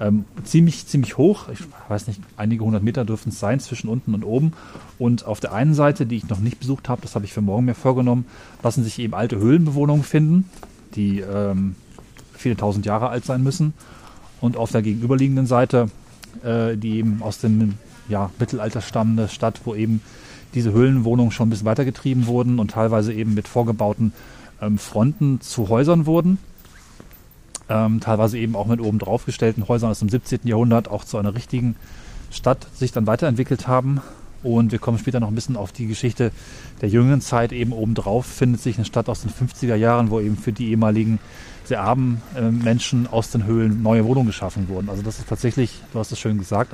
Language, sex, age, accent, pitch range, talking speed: German, male, 30-49, German, 110-125 Hz, 190 wpm